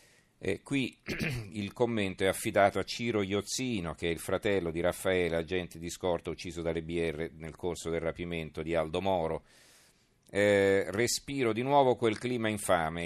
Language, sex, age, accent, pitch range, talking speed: Italian, male, 40-59, native, 85-100 Hz, 160 wpm